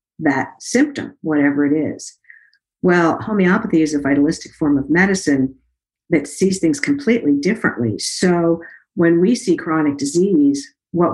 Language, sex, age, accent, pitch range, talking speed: English, female, 50-69, American, 140-185 Hz, 135 wpm